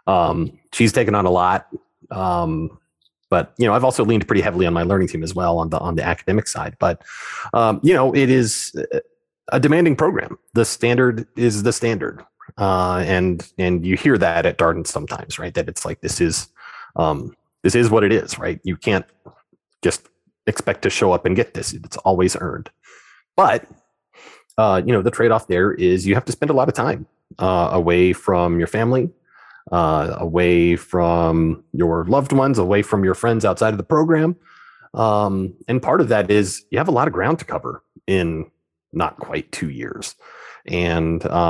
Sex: male